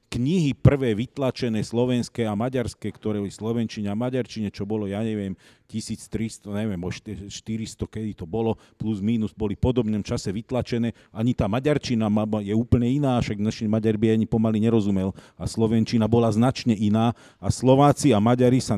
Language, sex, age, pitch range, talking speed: Slovak, male, 40-59, 110-135 Hz, 165 wpm